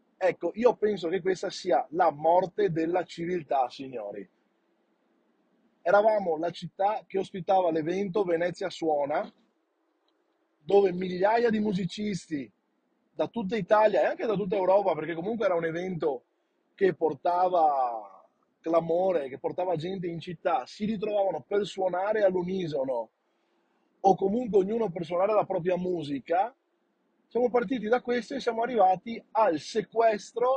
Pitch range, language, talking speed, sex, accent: 165-215 Hz, Italian, 130 wpm, male, native